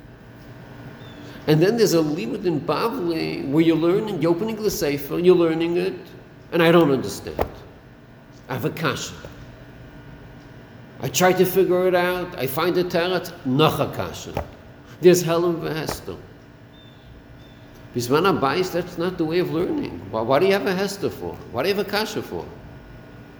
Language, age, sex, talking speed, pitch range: English, 50-69, male, 165 wpm, 130-185 Hz